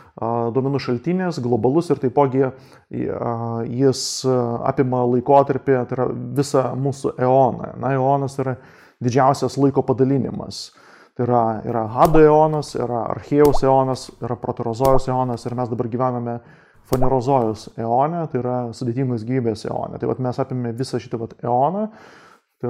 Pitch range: 120-135 Hz